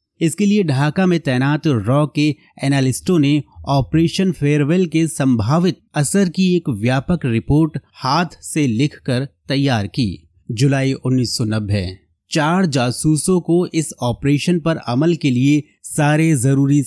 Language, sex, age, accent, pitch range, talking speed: Hindi, male, 30-49, native, 120-150 Hz, 130 wpm